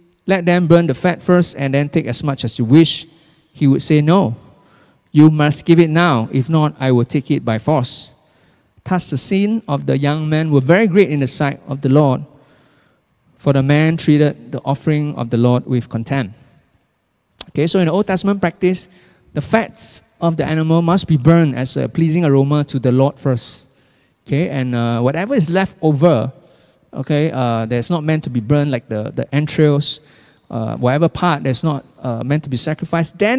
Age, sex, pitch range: 20-39, male, 135-175 Hz